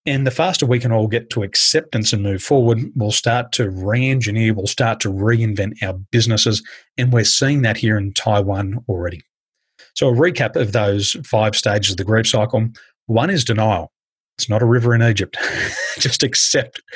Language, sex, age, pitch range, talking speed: English, male, 30-49, 105-125 Hz, 185 wpm